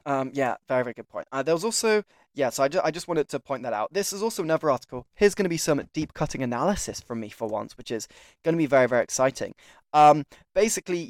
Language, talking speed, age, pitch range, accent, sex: English, 255 wpm, 10-29, 130-175 Hz, British, male